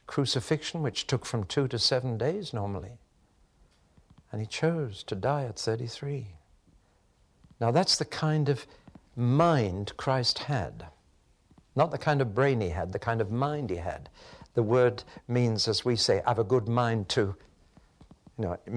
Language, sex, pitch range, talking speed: English, male, 100-140 Hz, 165 wpm